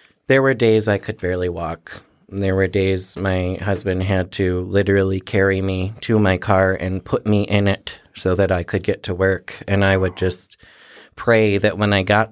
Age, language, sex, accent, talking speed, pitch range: 30-49, English, male, American, 200 wpm, 95-110 Hz